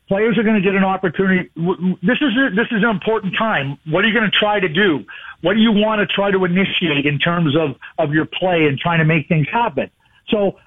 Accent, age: American, 50-69